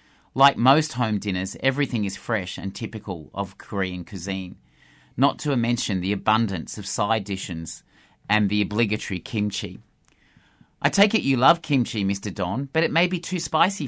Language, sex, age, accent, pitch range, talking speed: English, male, 30-49, Australian, 95-140 Hz, 165 wpm